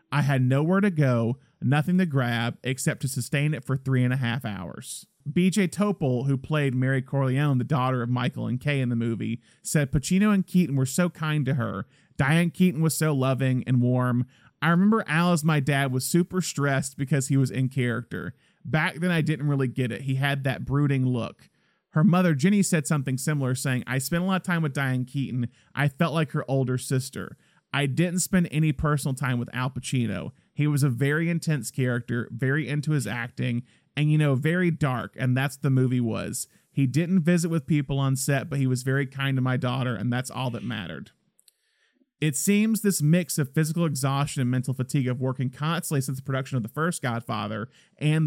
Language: English